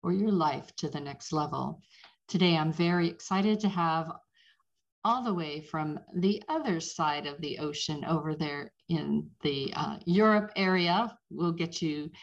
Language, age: English, 50-69